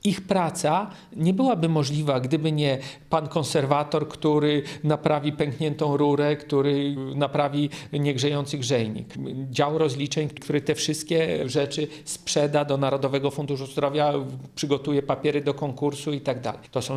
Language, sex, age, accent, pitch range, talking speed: Polish, male, 40-59, native, 145-165 Hz, 125 wpm